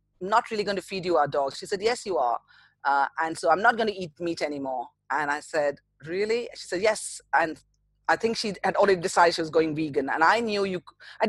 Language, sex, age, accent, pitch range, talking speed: English, female, 30-49, Indian, 160-210 Hz, 245 wpm